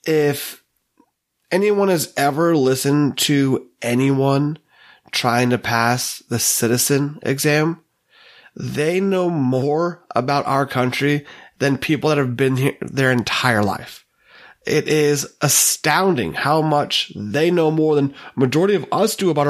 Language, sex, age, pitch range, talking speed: English, male, 30-49, 130-150 Hz, 130 wpm